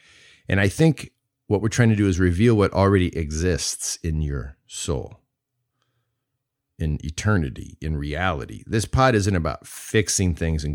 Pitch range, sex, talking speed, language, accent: 85-120 Hz, male, 150 wpm, English, American